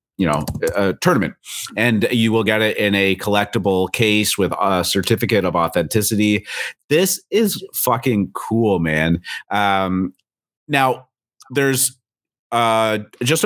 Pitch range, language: 90-115 Hz, English